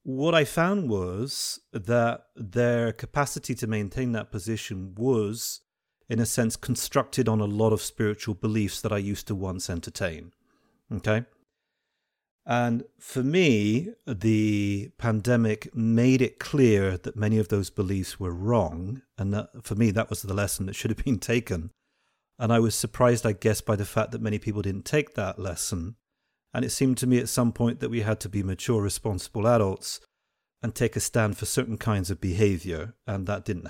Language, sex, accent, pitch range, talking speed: English, male, British, 100-120 Hz, 180 wpm